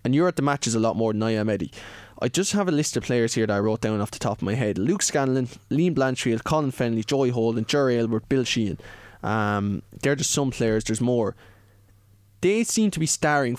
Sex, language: male, English